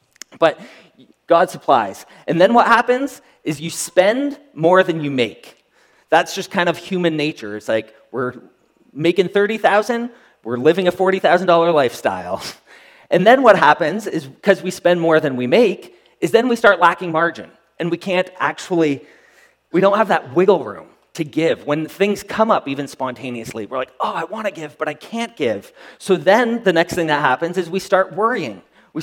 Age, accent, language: 30-49, American, English